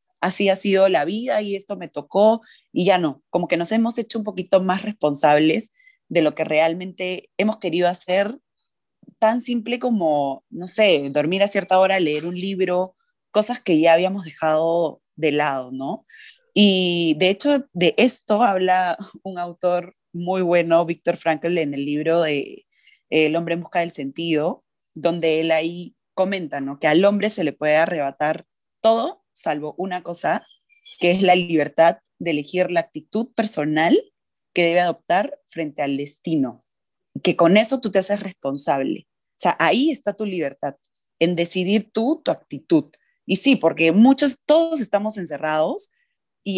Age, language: 20-39, Spanish